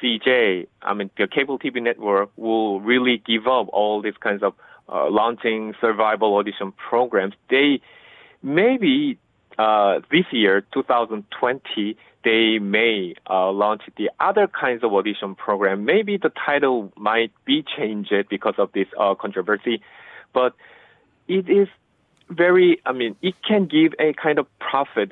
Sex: male